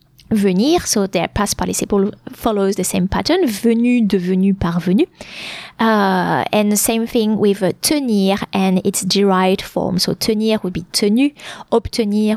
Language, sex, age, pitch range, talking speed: English, female, 20-39, 200-275 Hz, 145 wpm